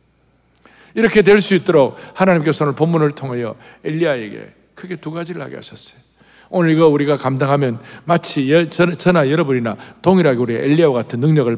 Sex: male